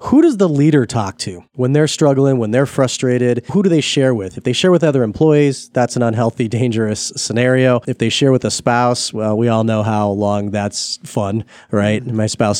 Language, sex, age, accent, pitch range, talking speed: English, male, 30-49, American, 115-140 Hz, 220 wpm